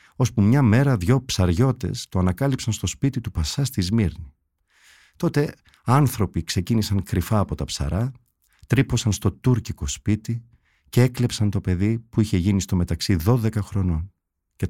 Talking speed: 145 wpm